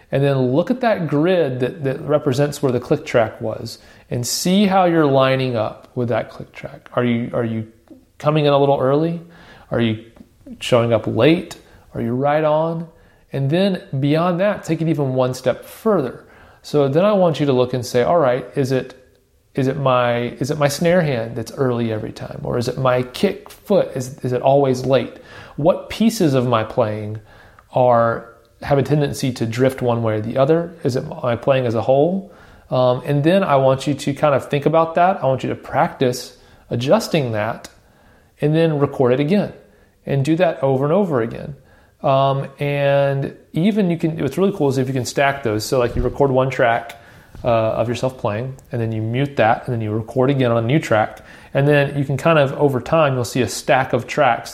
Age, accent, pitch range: 40-59, American, 120-150 Hz